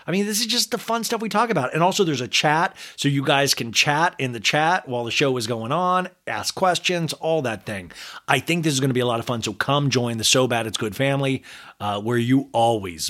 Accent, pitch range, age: American, 115-170 Hz, 30-49